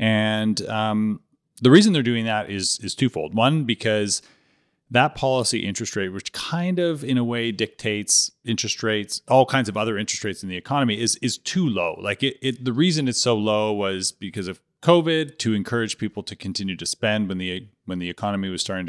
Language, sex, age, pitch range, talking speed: English, male, 30-49, 100-120 Hz, 205 wpm